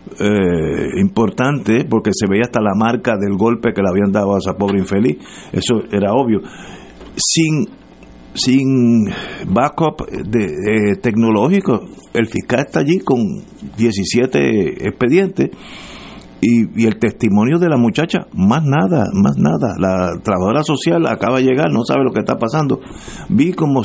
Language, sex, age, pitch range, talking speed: Spanish, male, 50-69, 100-135 Hz, 150 wpm